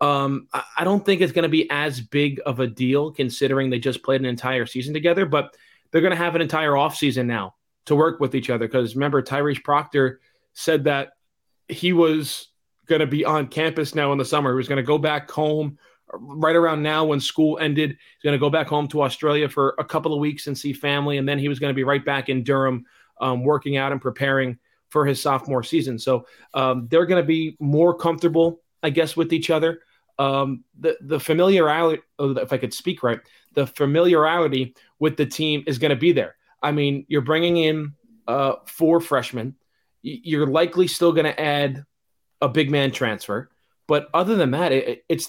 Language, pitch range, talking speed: English, 135-160 Hz, 210 wpm